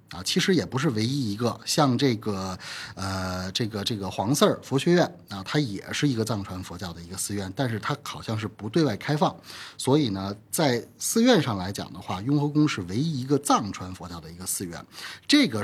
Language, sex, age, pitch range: Chinese, male, 30-49, 100-150 Hz